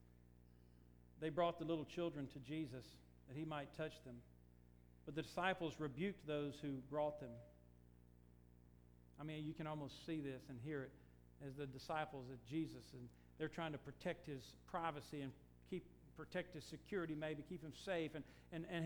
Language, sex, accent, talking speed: English, male, American, 170 wpm